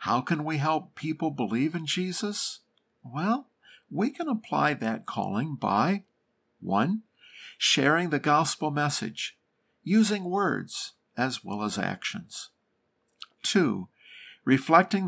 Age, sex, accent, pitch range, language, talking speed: 50-69, male, American, 115-185 Hz, English, 110 wpm